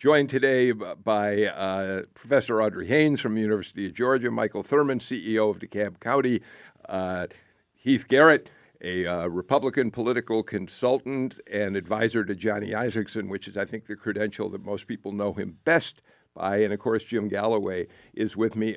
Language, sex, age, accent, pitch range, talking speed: English, male, 50-69, American, 105-125 Hz, 165 wpm